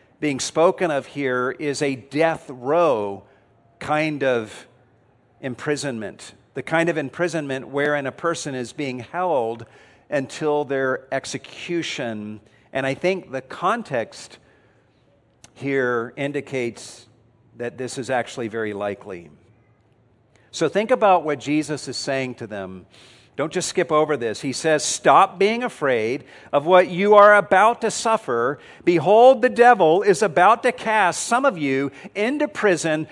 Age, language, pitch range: 50-69, English, 125-185 Hz